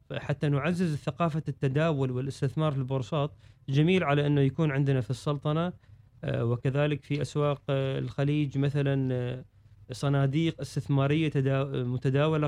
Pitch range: 130-150 Hz